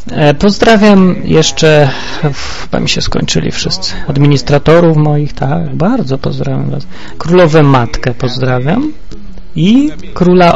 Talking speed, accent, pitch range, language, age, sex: 95 wpm, native, 120-160 Hz, Polish, 30-49, male